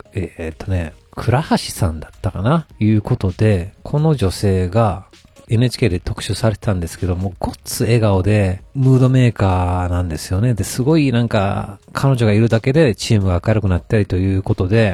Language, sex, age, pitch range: Japanese, male, 40-59, 90-120 Hz